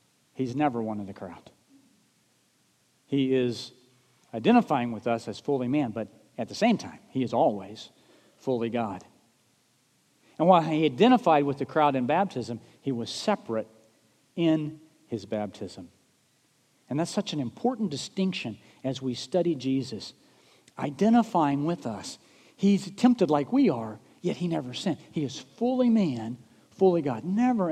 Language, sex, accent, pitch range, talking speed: English, male, American, 120-165 Hz, 145 wpm